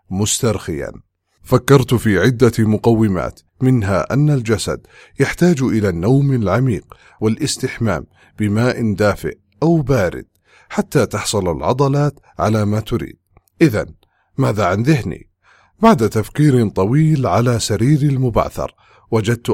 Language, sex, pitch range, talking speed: English, male, 105-135 Hz, 105 wpm